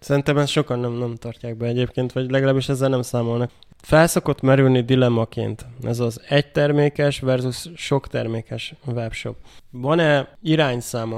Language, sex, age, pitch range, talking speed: Hungarian, male, 20-39, 125-145 Hz, 140 wpm